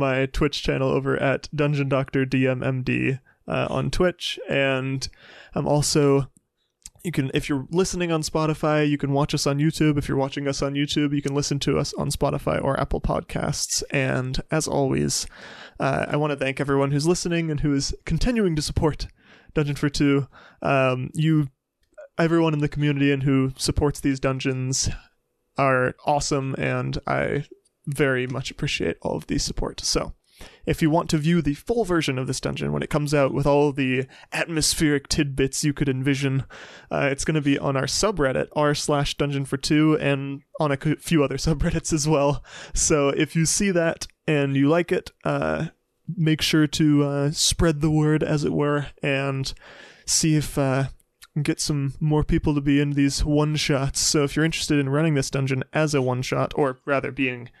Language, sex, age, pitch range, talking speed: English, male, 20-39, 135-155 Hz, 185 wpm